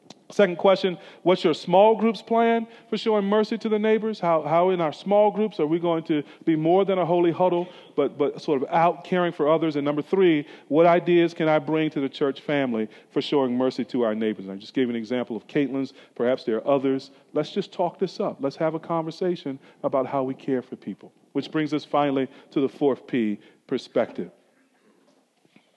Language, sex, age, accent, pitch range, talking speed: English, male, 40-59, American, 135-185 Hz, 210 wpm